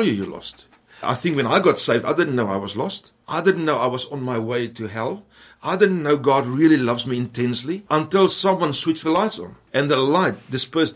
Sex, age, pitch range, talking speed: male, 60-79, 120-160 Hz, 230 wpm